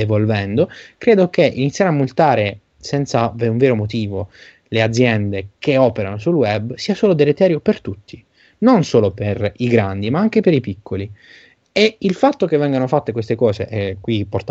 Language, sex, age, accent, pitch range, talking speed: Italian, male, 20-39, native, 105-155 Hz, 180 wpm